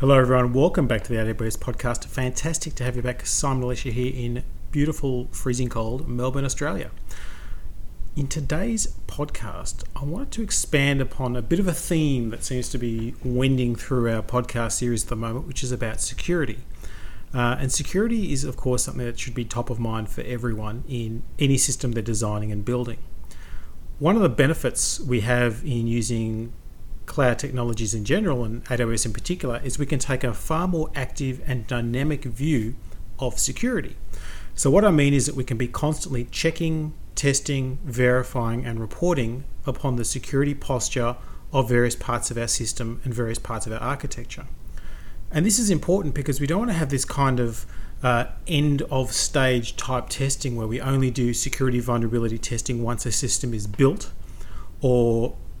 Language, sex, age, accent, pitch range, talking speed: English, male, 40-59, Australian, 115-140 Hz, 175 wpm